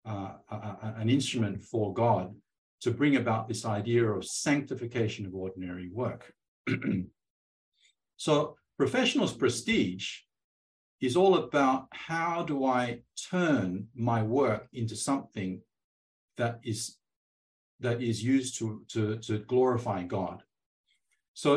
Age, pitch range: 50-69, 105-130 Hz